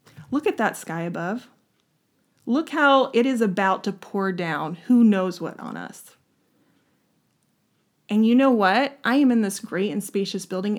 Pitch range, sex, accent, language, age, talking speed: 210-270 Hz, female, American, English, 30-49, 165 wpm